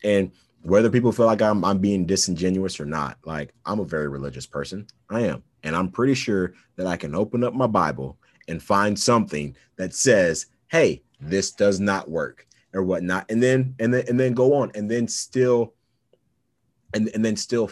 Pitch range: 90-115 Hz